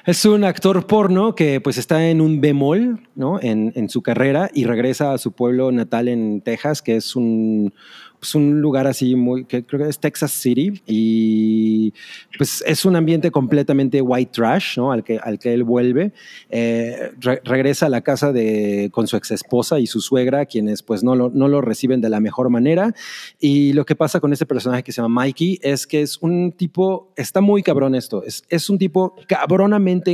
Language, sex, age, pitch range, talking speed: Spanish, male, 30-49, 120-150 Hz, 195 wpm